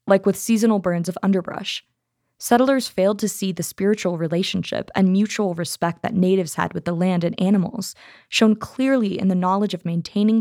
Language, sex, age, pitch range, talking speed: English, female, 20-39, 175-210 Hz, 180 wpm